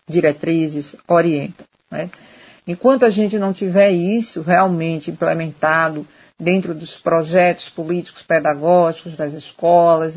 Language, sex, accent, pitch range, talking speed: Portuguese, female, Brazilian, 155-180 Hz, 105 wpm